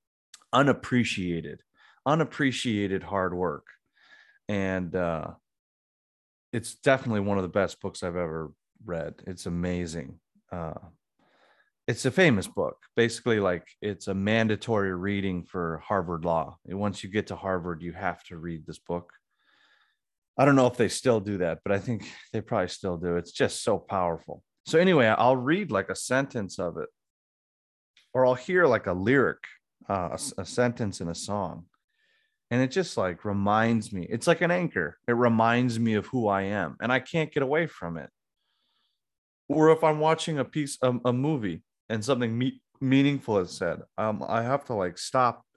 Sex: male